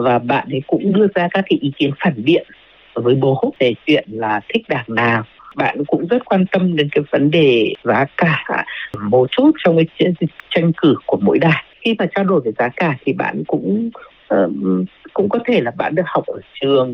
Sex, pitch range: female, 125-175 Hz